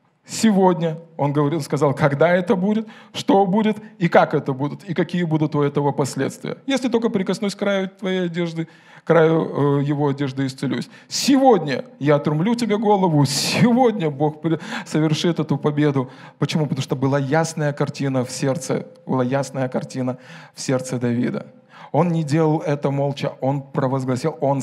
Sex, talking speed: male, 155 wpm